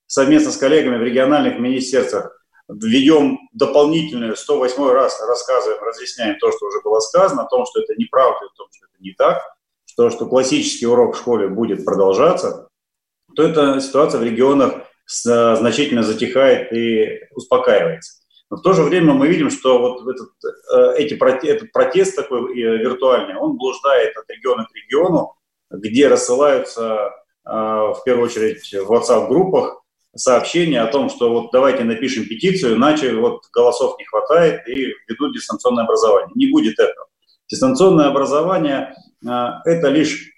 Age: 30-49